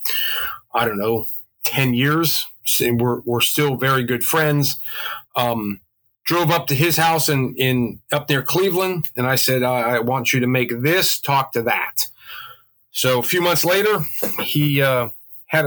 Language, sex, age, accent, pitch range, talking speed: English, male, 30-49, American, 125-145 Hz, 165 wpm